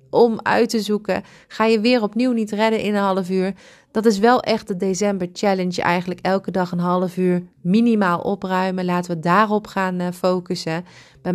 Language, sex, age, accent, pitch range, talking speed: Dutch, female, 30-49, Dutch, 175-205 Hz, 185 wpm